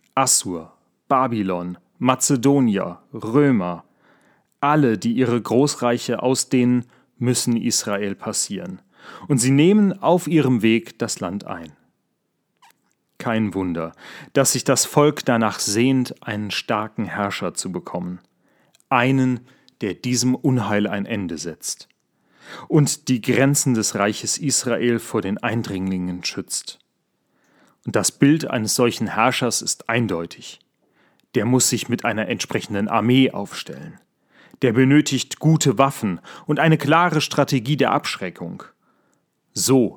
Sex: male